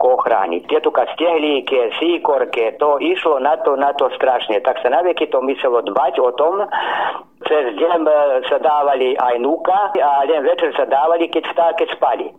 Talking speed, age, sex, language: 165 wpm, 50-69, male, Slovak